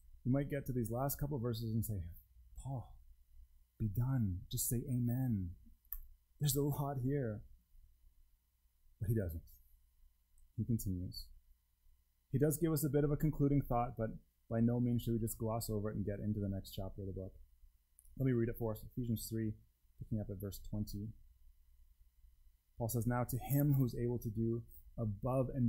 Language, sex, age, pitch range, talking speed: English, male, 30-49, 90-140 Hz, 185 wpm